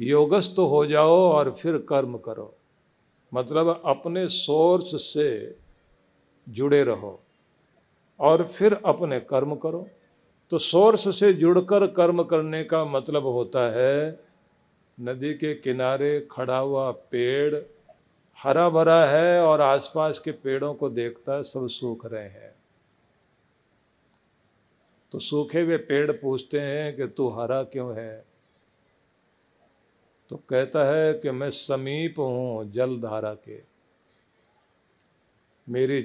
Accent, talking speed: native, 115 wpm